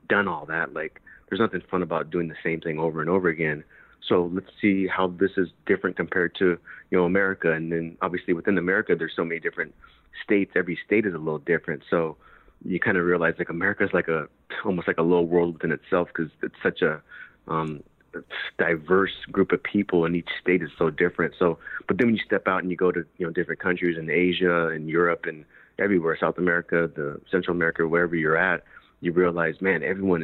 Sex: male